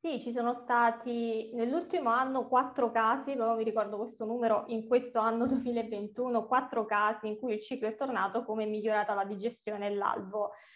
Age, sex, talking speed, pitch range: 20-39, female, 180 wpm, 210-235 Hz